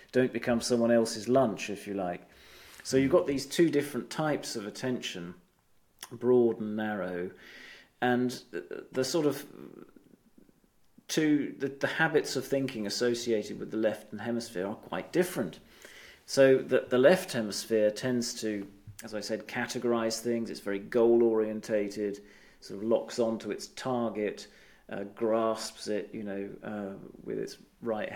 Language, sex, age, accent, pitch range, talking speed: English, male, 40-59, British, 105-125 Hz, 150 wpm